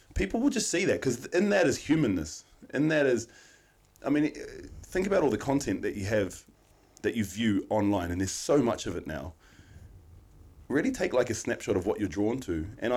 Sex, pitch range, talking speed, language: male, 95-115 Hz, 210 wpm, English